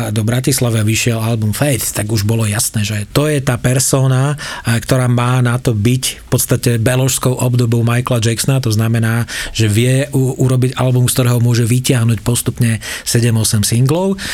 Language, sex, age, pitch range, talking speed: Slovak, male, 40-59, 120-135 Hz, 160 wpm